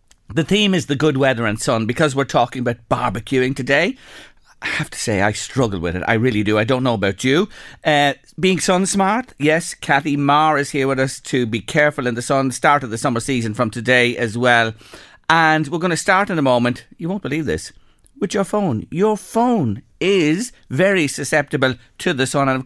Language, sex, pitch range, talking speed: English, male, 110-155 Hz, 215 wpm